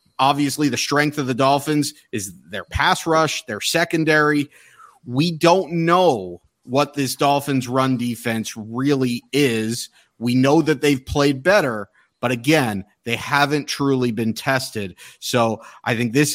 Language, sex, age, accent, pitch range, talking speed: English, male, 30-49, American, 125-155 Hz, 145 wpm